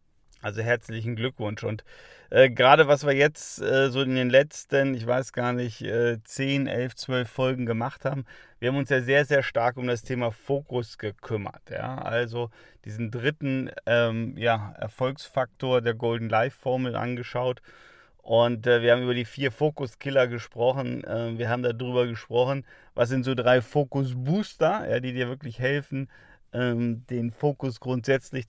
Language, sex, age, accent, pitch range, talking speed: German, male, 30-49, German, 120-140 Hz, 160 wpm